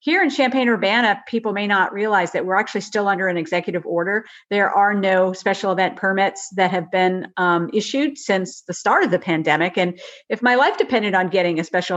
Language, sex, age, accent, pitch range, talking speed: English, female, 50-69, American, 185-235 Hz, 205 wpm